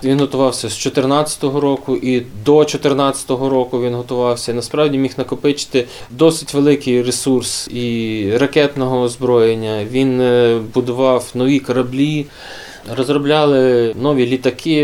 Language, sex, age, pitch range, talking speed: Ukrainian, male, 20-39, 120-140 Hz, 110 wpm